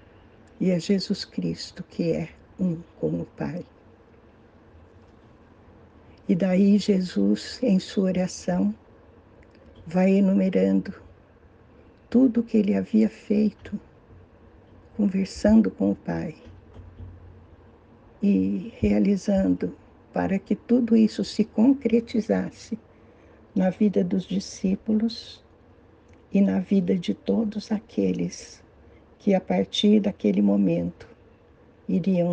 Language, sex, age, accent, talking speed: Portuguese, female, 60-79, Brazilian, 95 wpm